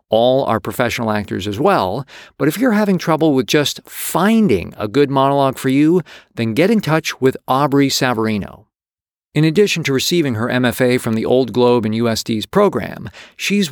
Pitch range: 120-165 Hz